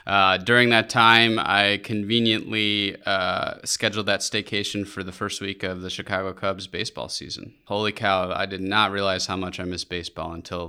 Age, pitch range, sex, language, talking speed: 20-39, 90-110 Hz, male, English, 180 wpm